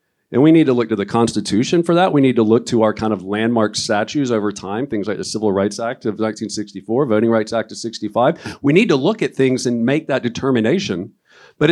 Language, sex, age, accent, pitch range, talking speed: English, male, 50-69, American, 115-155 Hz, 235 wpm